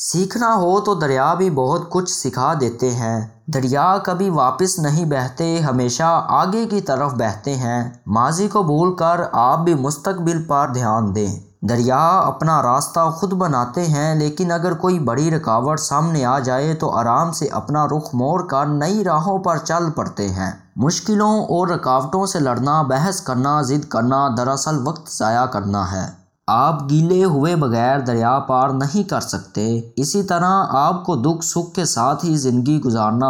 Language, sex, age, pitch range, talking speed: Urdu, male, 20-39, 125-170 Hz, 165 wpm